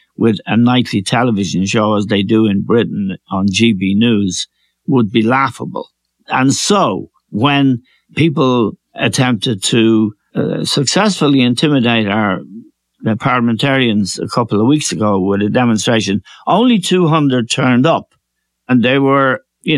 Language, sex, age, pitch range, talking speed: English, male, 60-79, 110-140 Hz, 135 wpm